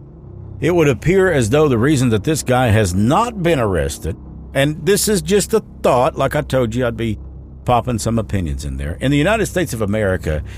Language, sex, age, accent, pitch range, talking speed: English, male, 50-69, American, 80-120 Hz, 210 wpm